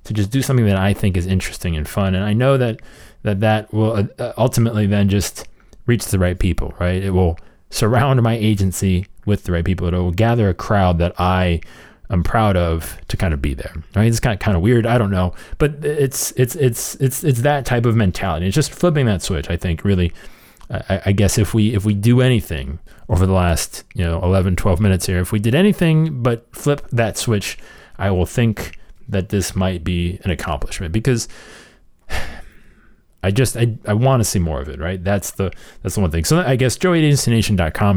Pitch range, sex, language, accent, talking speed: 90-115 Hz, male, English, American, 215 wpm